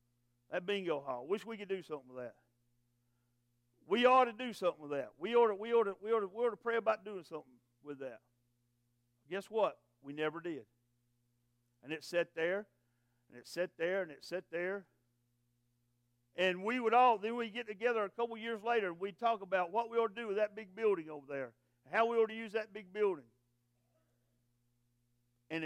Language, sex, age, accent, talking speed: English, male, 50-69, American, 205 wpm